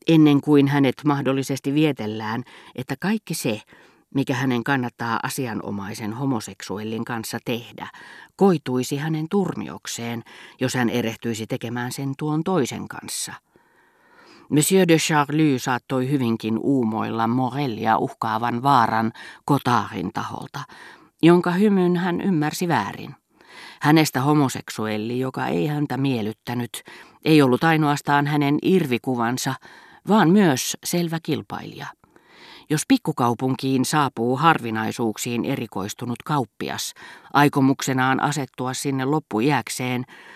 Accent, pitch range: native, 115-150 Hz